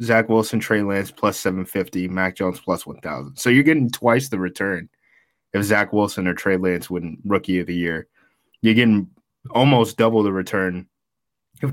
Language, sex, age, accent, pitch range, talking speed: English, male, 20-39, American, 95-115 Hz, 175 wpm